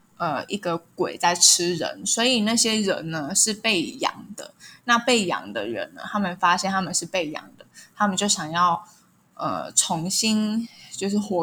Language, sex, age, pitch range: Chinese, female, 10-29, 175-220 Hz